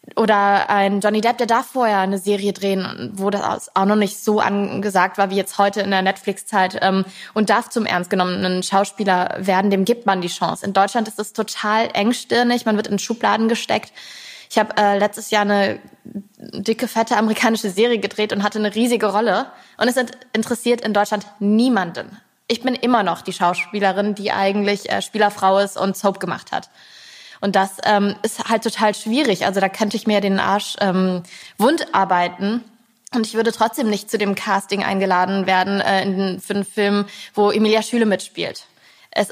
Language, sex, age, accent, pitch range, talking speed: German, female, 20-39, German, 195-220 Hz, 180 wpm